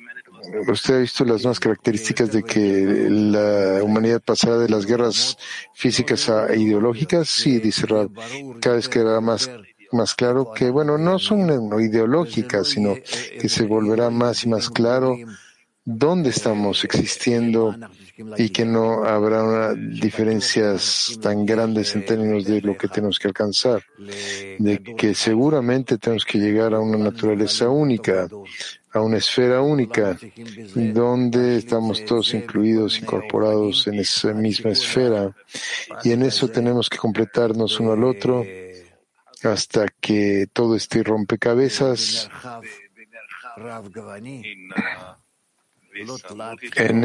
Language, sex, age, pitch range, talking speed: Spanish, male, 50-69, 105-120 Hz, 120 wpm